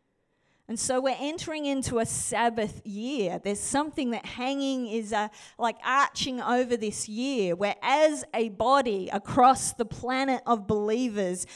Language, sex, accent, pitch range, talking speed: English, female, Australian, 225-280 Hz, 145 wpm